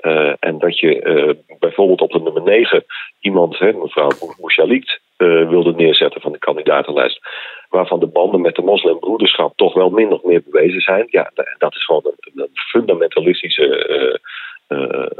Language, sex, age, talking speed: Dutch, male, 40-59, 165 wpm